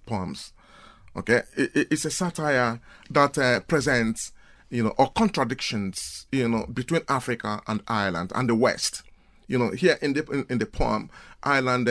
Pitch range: 115-160 Hz